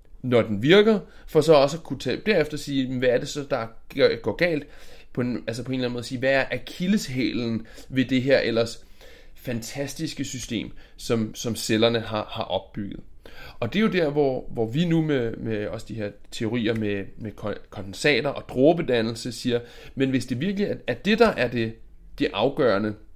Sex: male